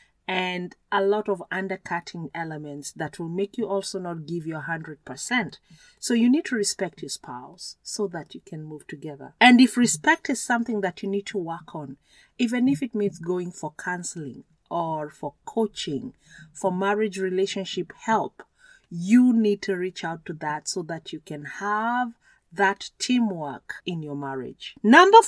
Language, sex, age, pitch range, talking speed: English, female, 40-59, 170-240 Hz, 175 wpm